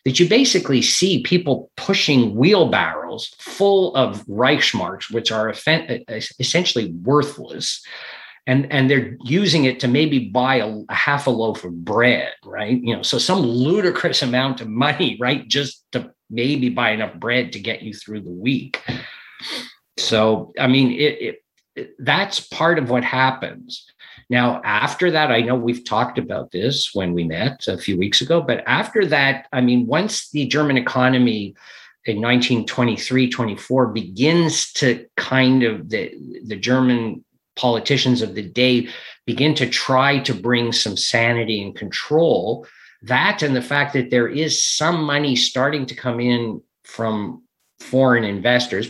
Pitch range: 115-145 Hz